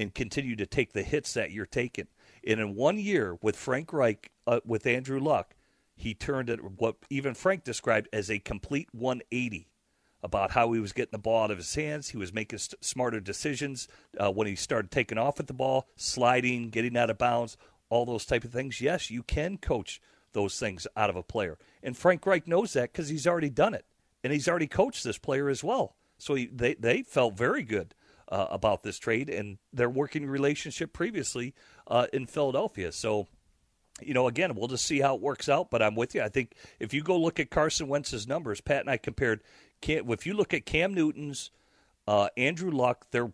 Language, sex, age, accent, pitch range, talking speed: English, male, 40-59, American, 110-145 Hz, 210 wpm